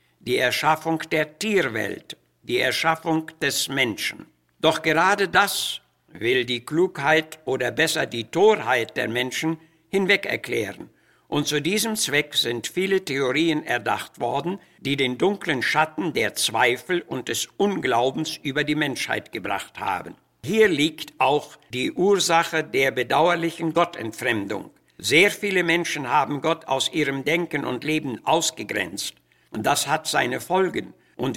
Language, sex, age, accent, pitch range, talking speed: German, male, 60-79, German, 140-175 Hz, 130 wpm